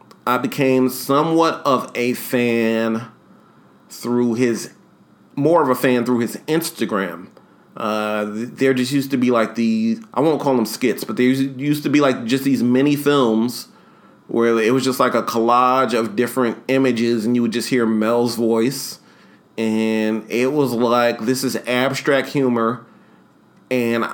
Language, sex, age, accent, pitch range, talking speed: English, male, 40-59, American, 115-135 Hz, 160 wpm